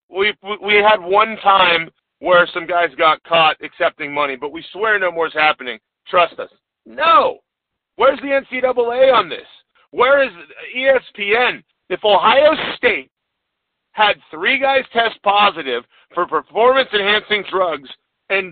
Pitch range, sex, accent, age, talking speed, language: 185-235 Hz, male, American, 40-59, 135 wpm, English